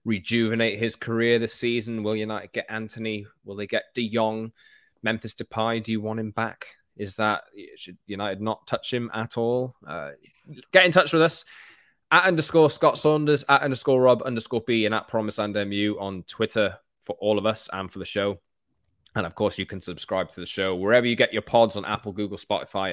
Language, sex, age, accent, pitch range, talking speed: English, male, 20-39, British, 95-125 Hz, 205 wpm